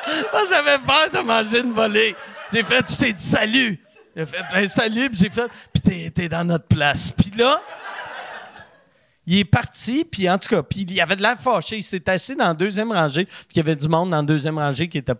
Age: 50-69